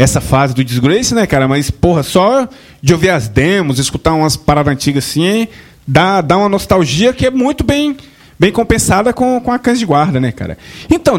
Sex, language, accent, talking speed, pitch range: male, Portuguese, Brazilian, 200 wpm, 140-220 Hz